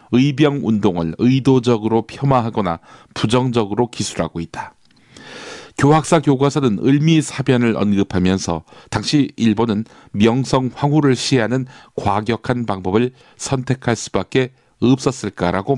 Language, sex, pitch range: Korean, male, 110-140 Hz